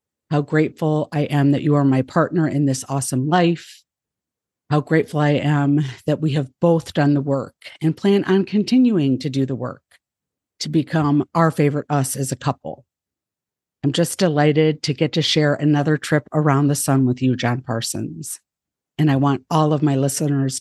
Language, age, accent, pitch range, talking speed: English, 50-69, American, 140-165 Hz, 185 wpm